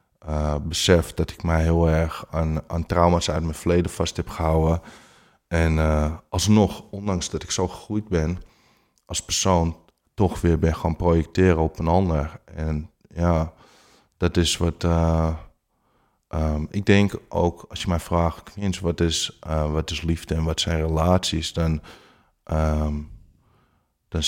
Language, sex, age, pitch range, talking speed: Dutch, male, 20-39, 80-90 Hz, 145 wpm